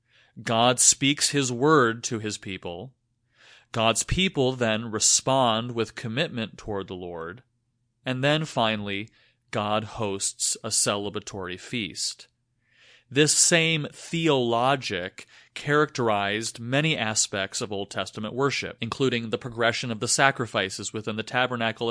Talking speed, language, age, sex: 120 wpm, English, 30-49, male